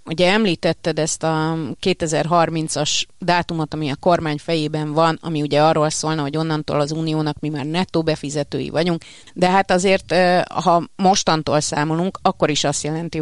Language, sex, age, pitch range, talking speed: Hungarian, female, 30-49, 145-165 Hz, 155 wpm